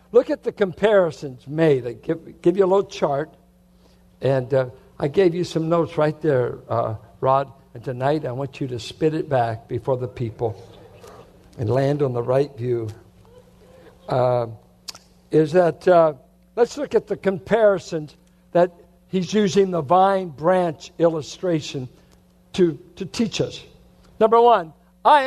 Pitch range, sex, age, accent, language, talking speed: 140-210 Hz, male, 60-79, American, English, 150 wpm